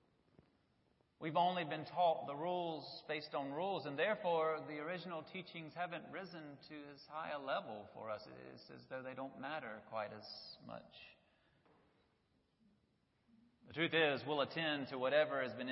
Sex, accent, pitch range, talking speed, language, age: male, American, 125-180 Hz, 155 wpm, English, 30-49